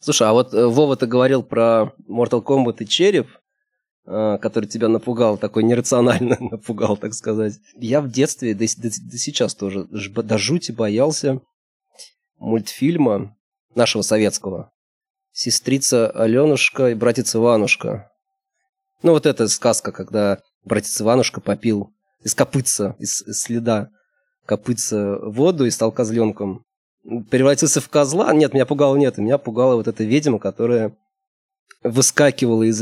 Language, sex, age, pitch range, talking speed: Russian, male, 20-39, 110-150 Hz, 125 wpm